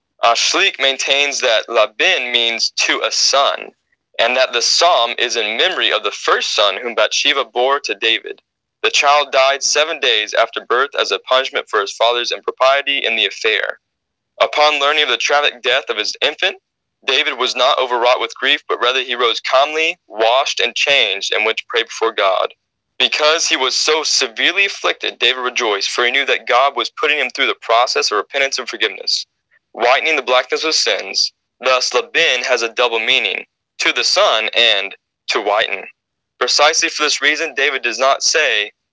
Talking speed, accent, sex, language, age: 180 wpm, American, male, English, 20-39